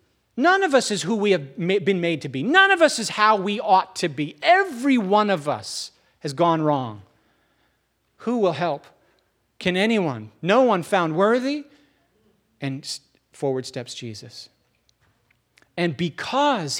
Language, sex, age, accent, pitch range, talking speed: English, male, 40-59, American, 155-215 Hz, 150 wpm